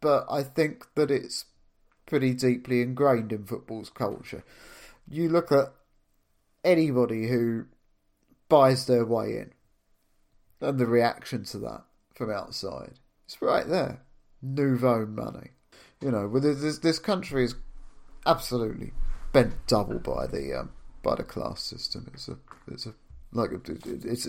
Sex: male